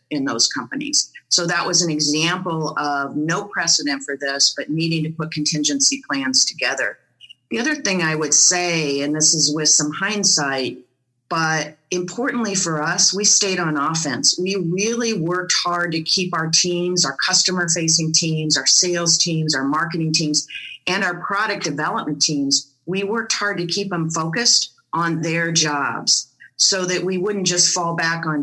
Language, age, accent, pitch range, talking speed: English, 40-59, American, 155-180 Hz, 170 wpm